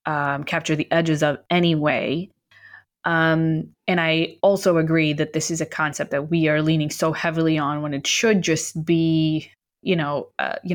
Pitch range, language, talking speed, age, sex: 155-180 Hz, English, 185 wpm, 20-39, female